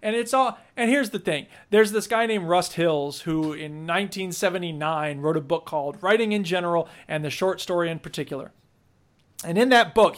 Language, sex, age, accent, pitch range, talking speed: English, male, 40-59, American, 165-220 Hz, 195 wpm